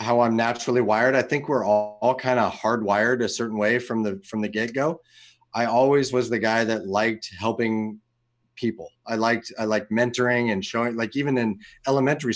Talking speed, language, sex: 200 wpm, English, male